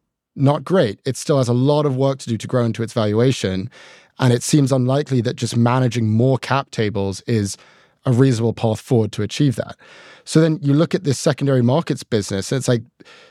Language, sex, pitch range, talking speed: English, male, 115-145 Hz, 210 wpm